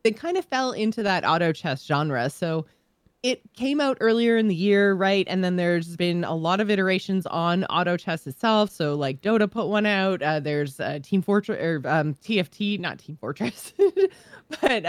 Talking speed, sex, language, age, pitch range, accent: 195 wpm, female, English, 20-39, 165-225 Hz, American